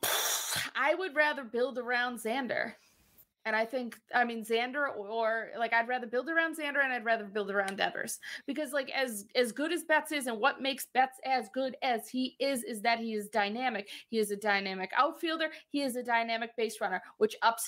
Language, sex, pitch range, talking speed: English, female, 235-310 Hz, 205 wpm